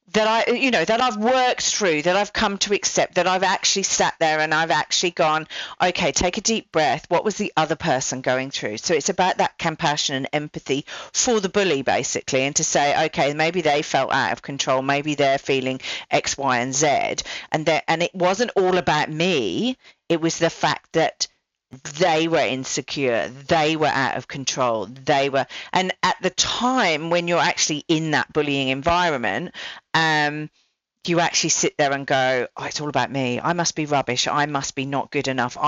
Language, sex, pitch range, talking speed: English, female, 135-170 Hz, 200 wpm